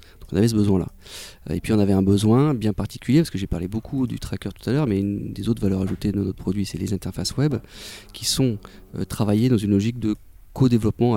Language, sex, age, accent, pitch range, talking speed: French, male, 40-59, French, 95-120 Hz, 235 wpm